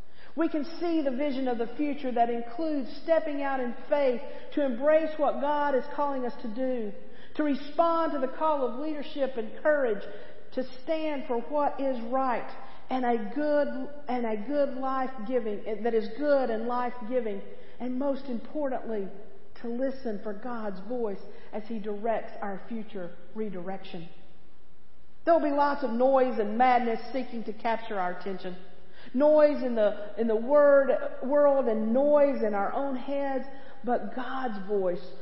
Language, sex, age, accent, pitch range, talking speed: English, female, 50-69, American, 220-280 Hz, 160 wpm